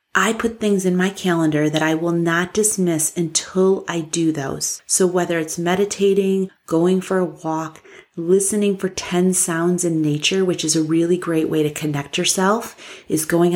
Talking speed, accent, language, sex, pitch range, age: 175 wpm, American, English, female, 160-200 Hz, 30-49